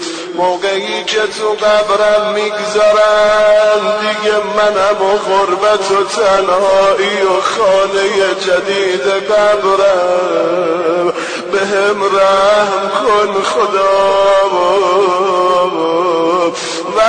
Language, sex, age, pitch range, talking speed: Persian, male, 30-49, 195-215 Hz, 65 wpm